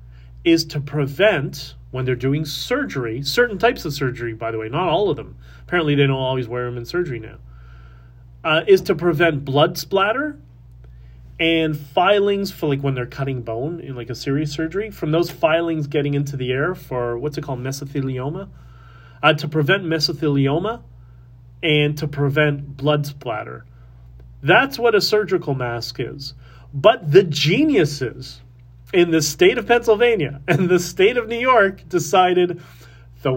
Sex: male